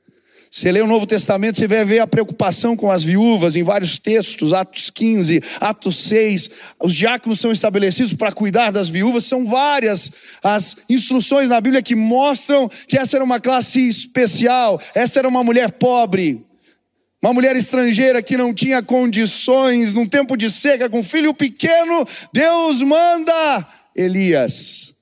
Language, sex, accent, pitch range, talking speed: Portuguese, male, Brazilian, 195-260 Hz, 155 wpm